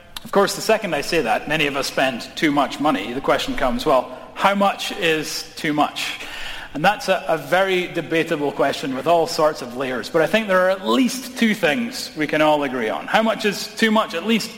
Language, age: English, 30-49